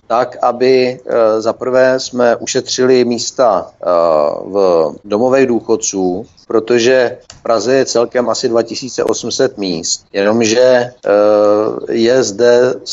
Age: 50-69